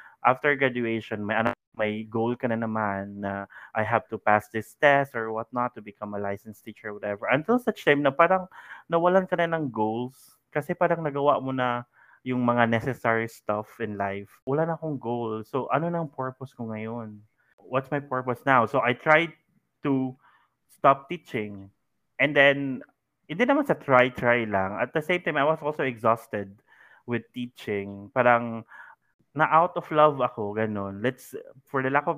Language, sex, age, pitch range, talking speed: Filipino, male, 20-39, 110-140 Hz, 180 wpm